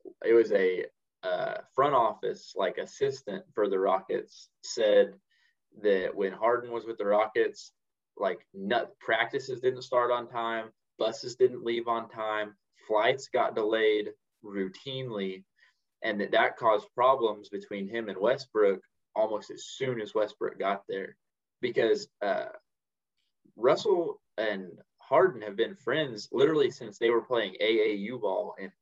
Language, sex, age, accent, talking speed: English, male, 20-39, American, 135 wpm